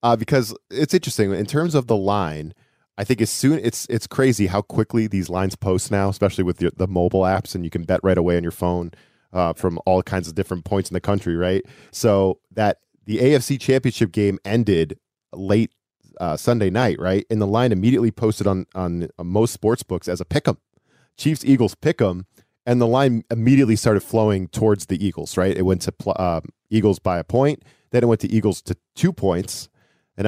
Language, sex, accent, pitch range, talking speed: English, male, American, 95-120 Hz, 210 wpm